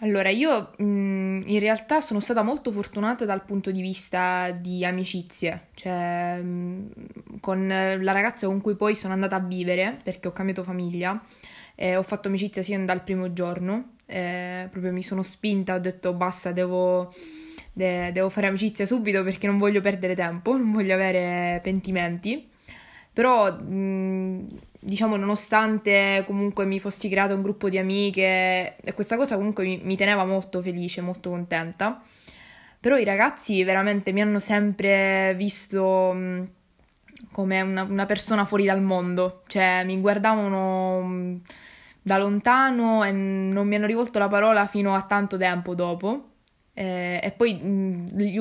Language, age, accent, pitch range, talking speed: Italian, 20-39, native, 185-205 Hz, 150 wpm